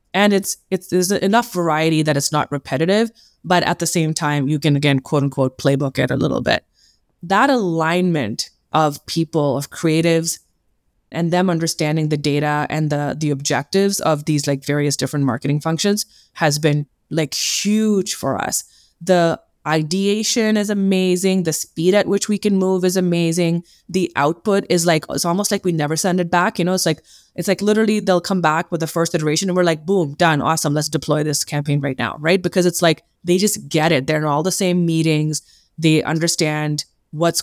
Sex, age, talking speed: female, 20-39, 195 wpm